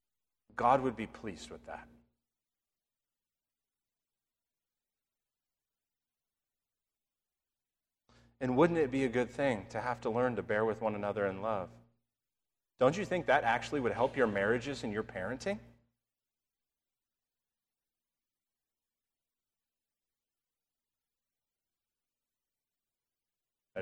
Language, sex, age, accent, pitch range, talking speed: English, male, 40-59, American, 105-125 Hz, 95 wpm